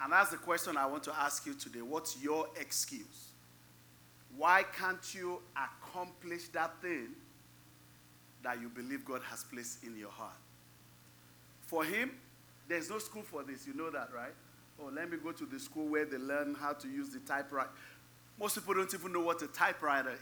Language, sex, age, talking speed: English, male, 40-59, 185 wpm